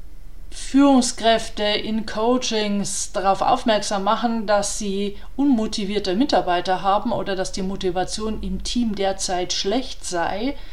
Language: German